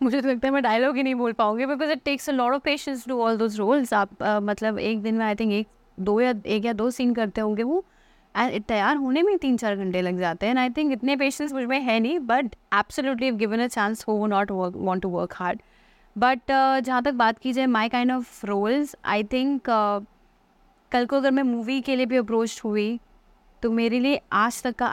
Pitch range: 210-260 Hz